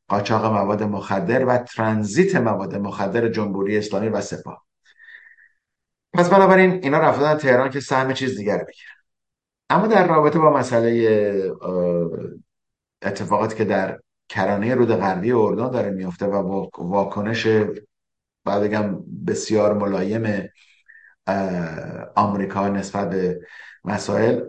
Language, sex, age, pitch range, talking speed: Persian, male, 50-69, 100-120 Hz, 110 wpm